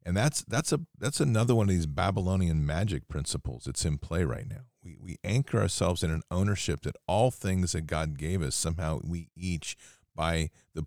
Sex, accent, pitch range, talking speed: male, American, 80-100 Hz, 200 wpm